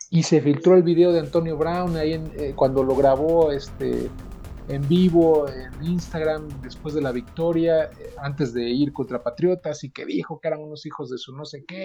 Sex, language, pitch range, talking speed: male, Spanish, 130-165 Hz, 210 wpm